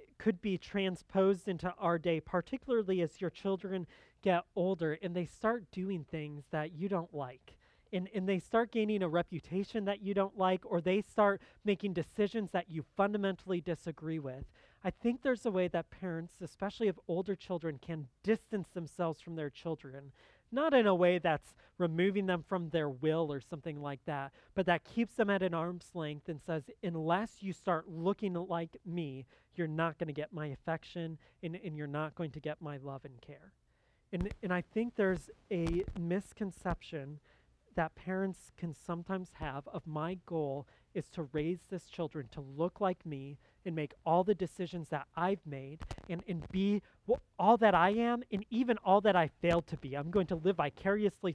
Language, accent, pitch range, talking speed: English, American, 155-190 Hz, 185 wpm